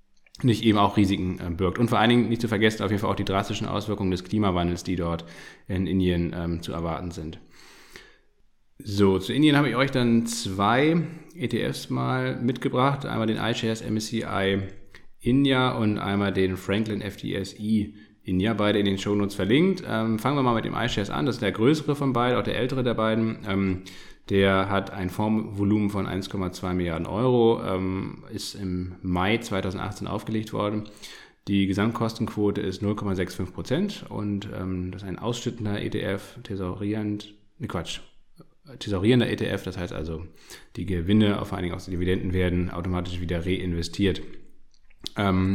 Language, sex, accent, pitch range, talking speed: German, male, German, 95-115 Hz, 165 wpm